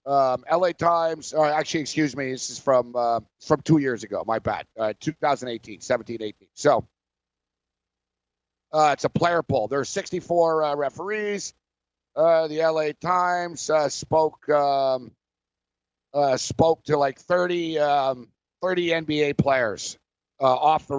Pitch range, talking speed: 105-165 Hz, 145 wpm